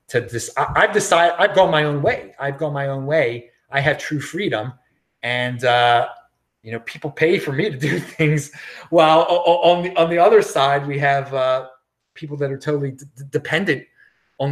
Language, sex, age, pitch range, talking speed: English, male, 30-49, 130-160 Hz, 185 wpm